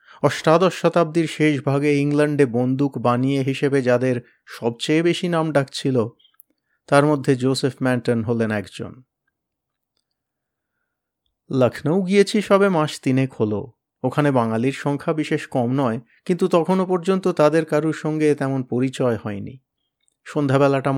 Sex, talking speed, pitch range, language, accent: male, 115 wpm, 125-160 Hz, Bengali, native